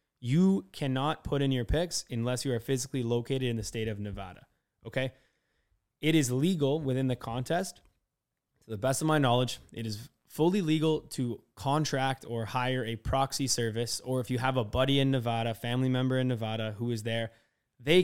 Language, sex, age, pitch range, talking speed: English, male, 20-39, 115-140 Hz, 185 wpm